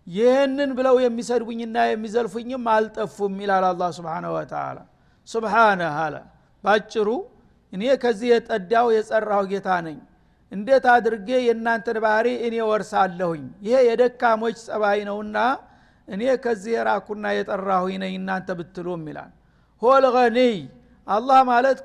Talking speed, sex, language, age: 110 wpm, male, Amharic, 60-79